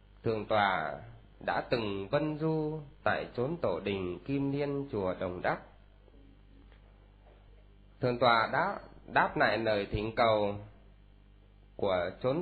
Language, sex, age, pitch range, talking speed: Vietnamese, male, 20-39, 100-145 Hz, 120 wpm